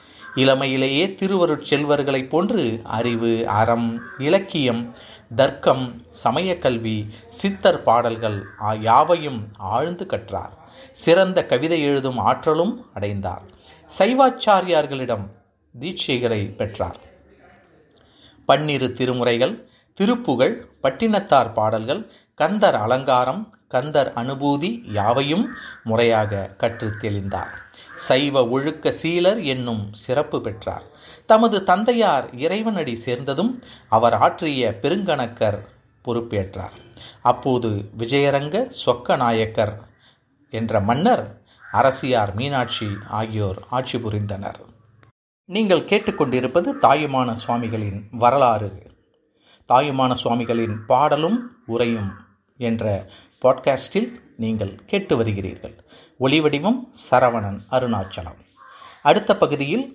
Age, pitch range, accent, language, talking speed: 30-49, 110-150 Hz, native, Tamil, 80 wpm